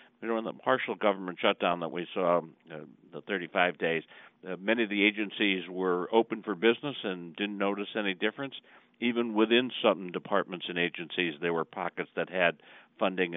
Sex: male